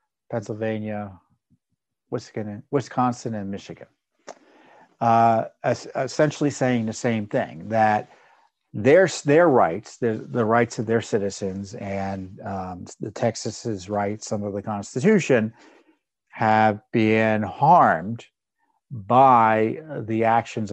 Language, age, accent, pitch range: English, 50-69, American, 105-130 Hz